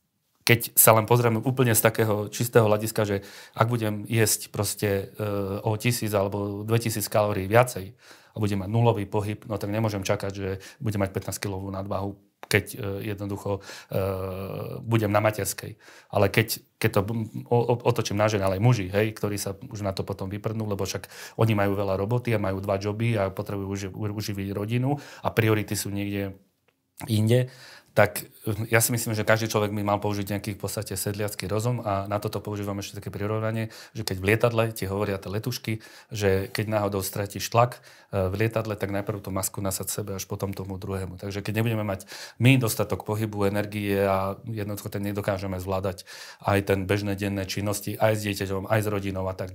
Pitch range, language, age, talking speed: 100-110 Hz, Slovak, 30-49, 185 wpm